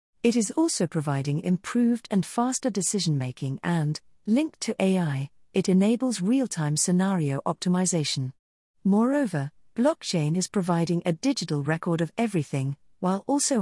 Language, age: English, 40-59